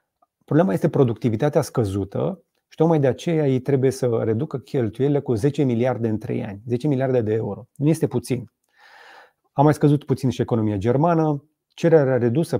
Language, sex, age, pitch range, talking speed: Romanian, male, 30-49, 120-150 Hz, 165 wpm